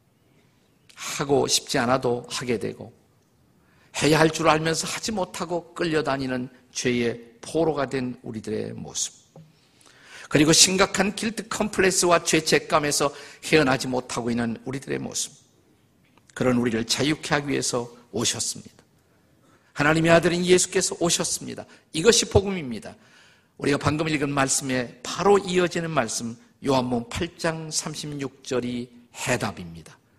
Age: 50-69